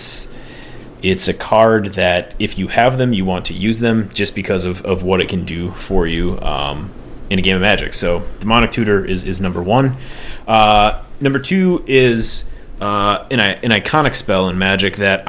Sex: male